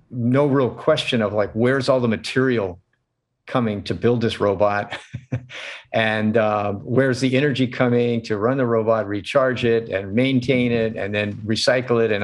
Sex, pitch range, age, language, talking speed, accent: male, 110-130 Hz, 50-69, English, 165 wpm, American